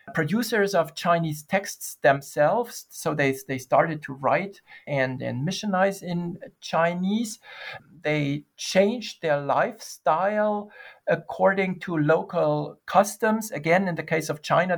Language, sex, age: English, male, 50-69